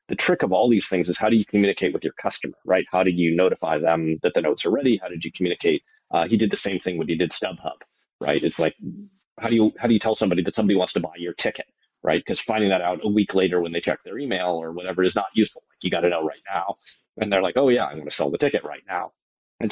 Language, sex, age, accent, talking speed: English, male, 30-49, American, 290 wpm